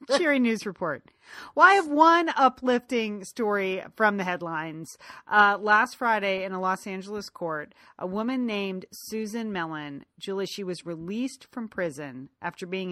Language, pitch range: English, 185-230 Hz